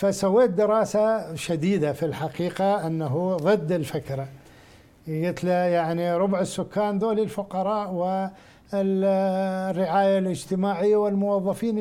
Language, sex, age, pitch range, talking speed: Arabic, male, 60-79, 165-200 Hz, 85 wpm